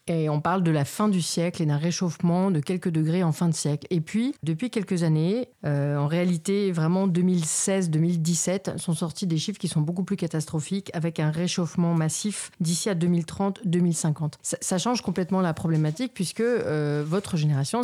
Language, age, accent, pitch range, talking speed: French, 40-59, French, 155-190 Hz, 190 wpm